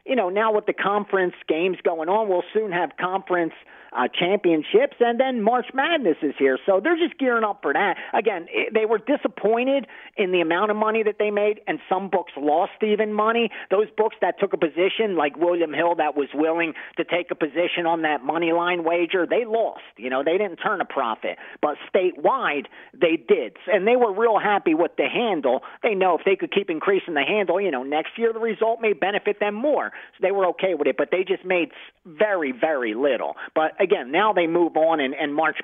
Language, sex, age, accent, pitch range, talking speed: English, male, 40-59, American, 170-230 Hz, 215 wpm